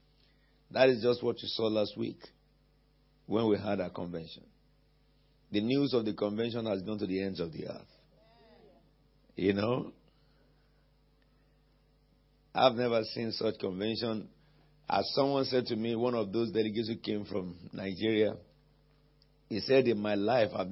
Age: 50-69